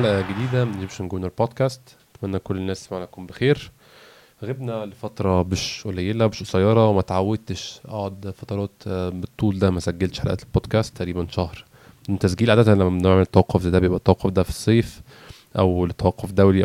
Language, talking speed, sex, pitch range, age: Arabic, 160 wpm, male, 95-110 Hz, 20-39